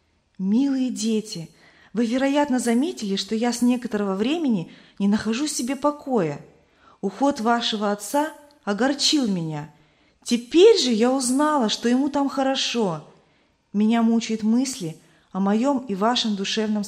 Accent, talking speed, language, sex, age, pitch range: native, 125 wpm, Russian, female, 20-39, 190-255 Hz